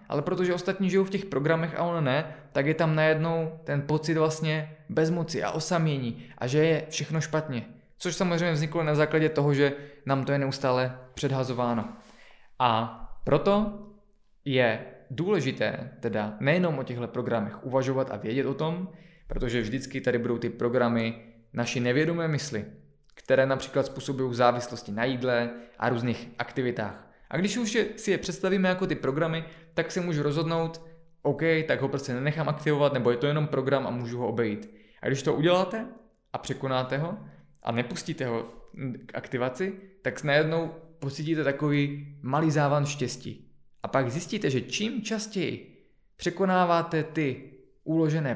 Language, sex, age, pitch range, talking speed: Czech, male, 20-39, 130-165 Hz, 155 wpm